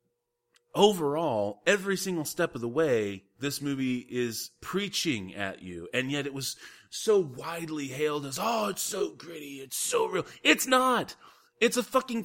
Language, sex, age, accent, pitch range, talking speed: English, male, 30-49, American, 125-200 Hz, 160 wpm